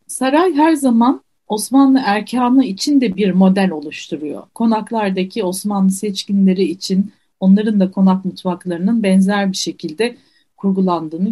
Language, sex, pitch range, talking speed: Turkish, female, 185-265 Hz, 115 wpm